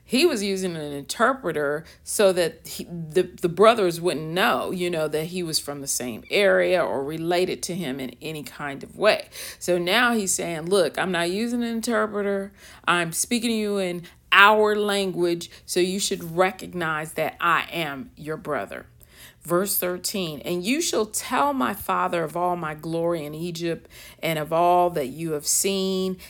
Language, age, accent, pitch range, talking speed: English, 40-59, American, 160-195 Hz, 175 wpm